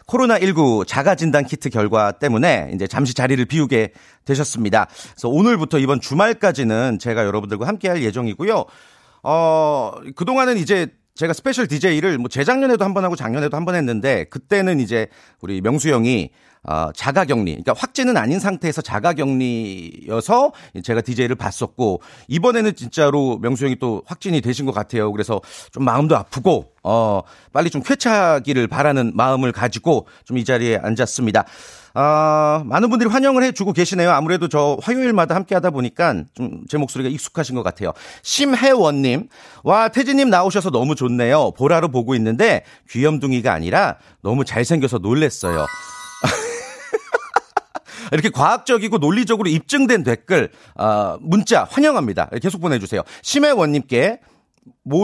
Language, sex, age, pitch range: Korean, male, 40-59, 120-190 Hz